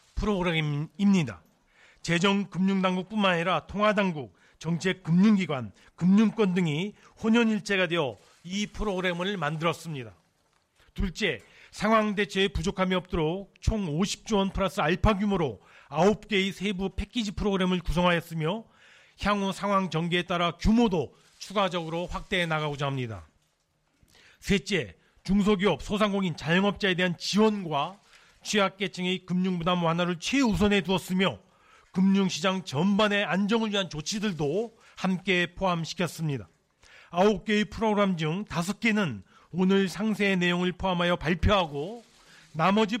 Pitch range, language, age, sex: 170-205 Hz, Korean, 40-59, male